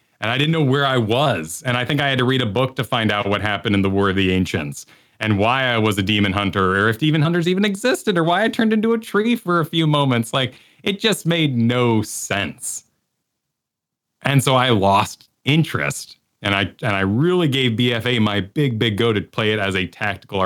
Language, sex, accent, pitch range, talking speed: English, male, American, 100-140 Hz, 230 wpm